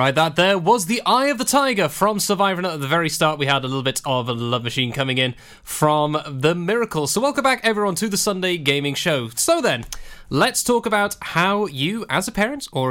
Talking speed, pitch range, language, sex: 230 wpm, 135-195 Hz, English, male